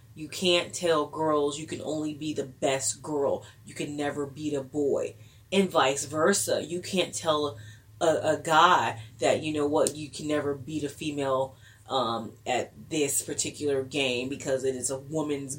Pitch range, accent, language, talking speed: 130-165 Hz, American, English, 175 wpm